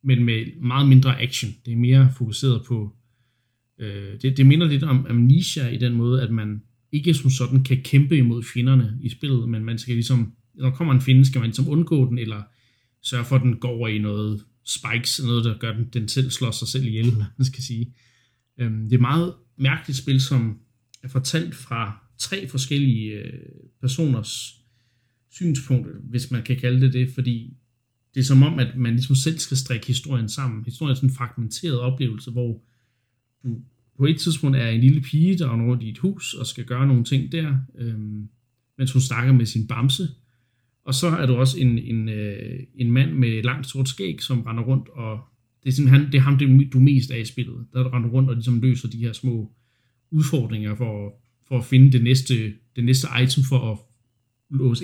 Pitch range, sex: 120-130 Hz, male